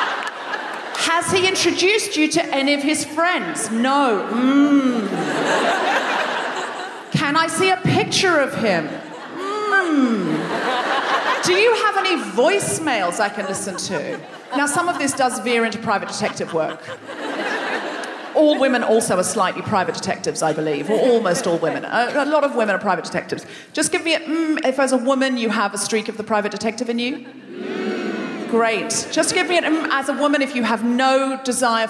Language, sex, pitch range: English, female, 245-345 Hz